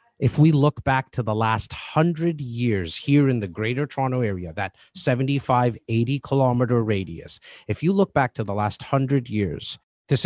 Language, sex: English, male